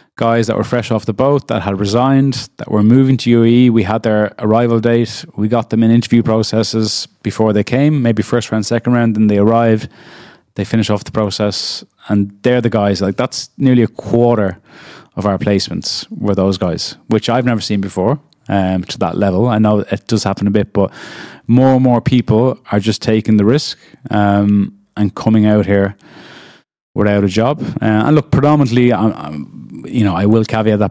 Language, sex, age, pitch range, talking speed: English, male, 20-39, 100-115 Hz, 200 wpm